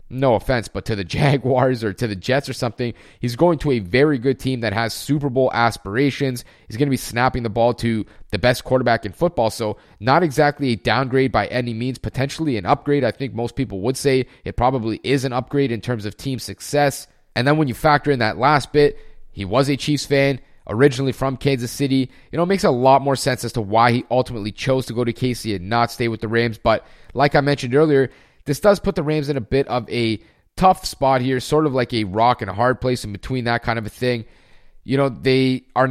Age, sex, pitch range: 30-49, male, 120-145 Hz